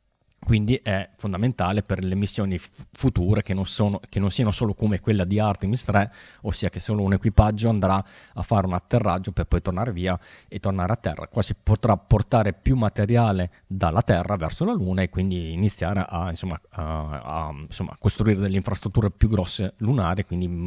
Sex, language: male, Italian